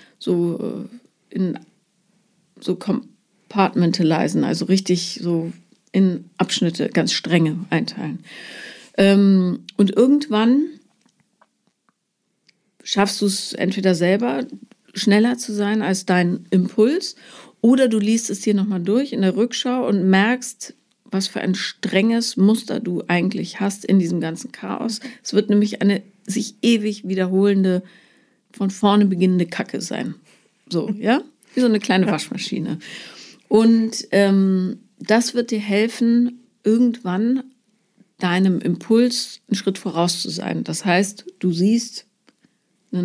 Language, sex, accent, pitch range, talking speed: German, female, German, 190-235 Hz, 120 wpm